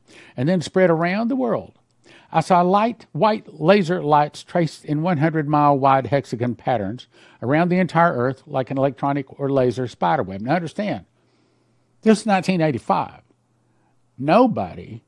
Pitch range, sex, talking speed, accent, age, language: 120-165 Hz, male, 145 wpm, American, 60-79, English